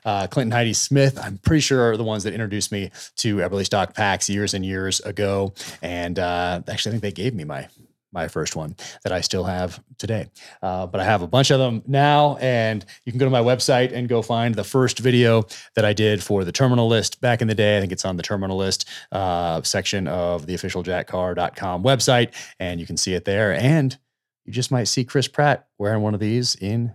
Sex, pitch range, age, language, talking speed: male, 95-125 Hz, 30-49, English, 230 wpm